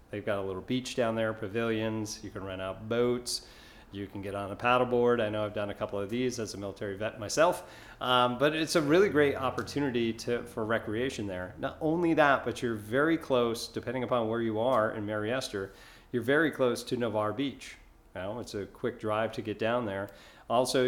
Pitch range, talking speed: 105-125 Hz, 205 wpm